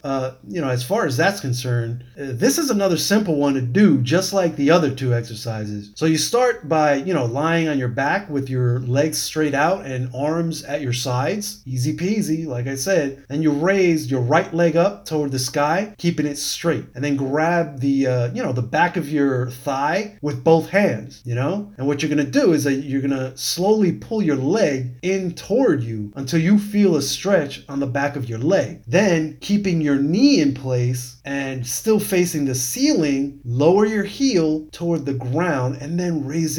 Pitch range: 135-185 Hz